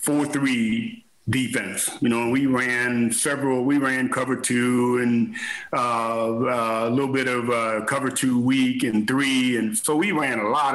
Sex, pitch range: male, 125-175 Hz